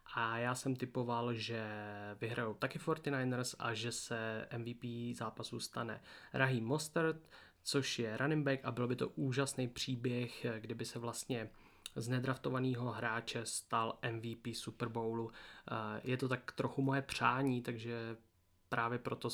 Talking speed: 135 wpm